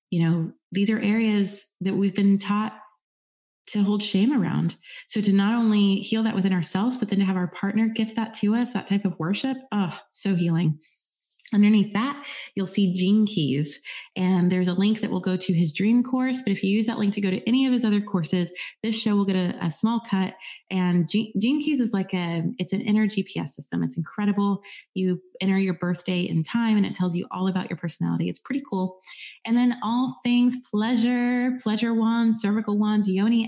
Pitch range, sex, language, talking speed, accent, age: 185-215 Hz, female, English, 210 wpm, American, 20-39